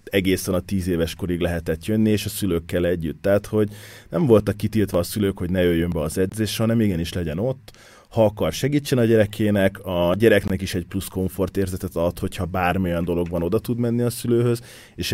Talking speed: 200 wpm